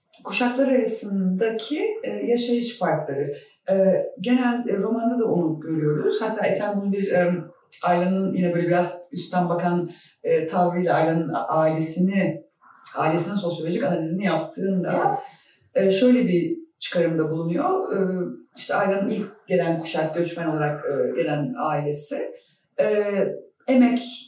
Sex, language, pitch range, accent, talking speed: female, Turkish, 165-220 Hz, native, 100 wpm